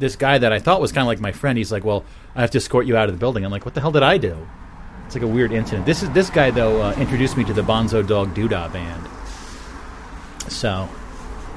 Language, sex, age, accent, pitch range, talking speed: English, male, 30-49, American, 95-140 Hz, 270 wpm